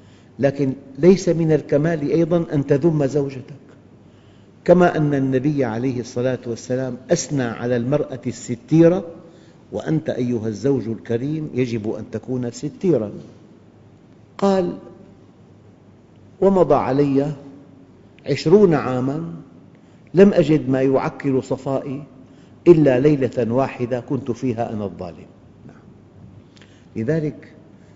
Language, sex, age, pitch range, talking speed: Arabic, male, 50-69, 115-140 Hz, 90 wpm